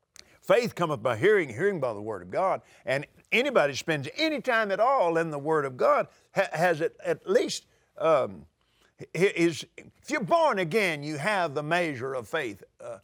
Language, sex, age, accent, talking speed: English, male, 50-69, American, 170 wpm